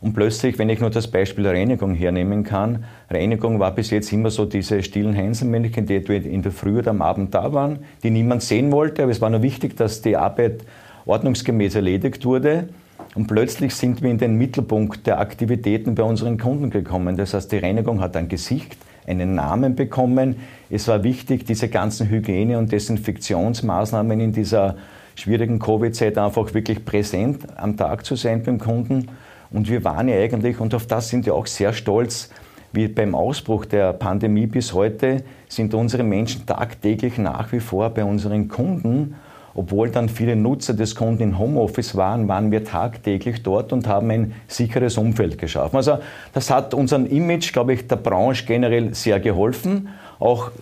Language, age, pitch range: German, 50-69, 105-125 Hz